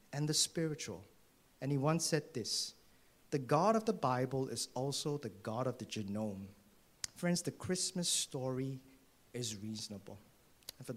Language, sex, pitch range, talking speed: English, male, 125-180 Hz, 155 wpm